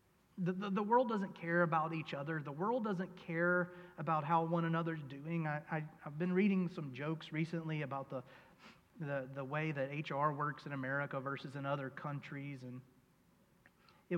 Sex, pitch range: male, 135-175 Hz